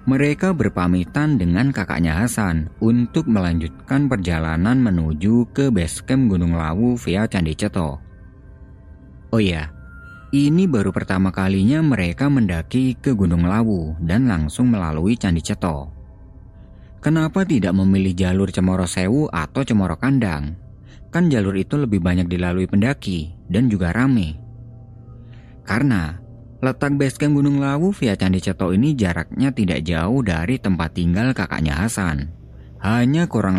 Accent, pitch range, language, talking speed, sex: native, 85-120 Hz, Indonesian, 125 wpm, male